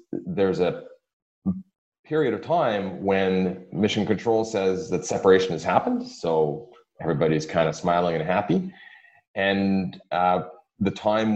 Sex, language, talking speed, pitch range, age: male, English, 125 wpm, 90-125 Hz, 30-49